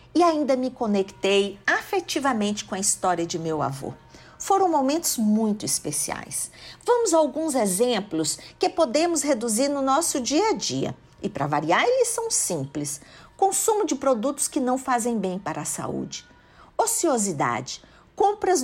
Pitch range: 185-290 Hz